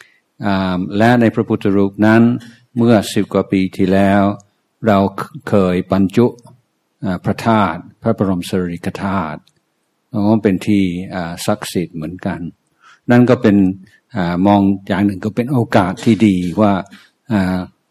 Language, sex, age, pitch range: Thai, male, 60-79, 90-105 Hz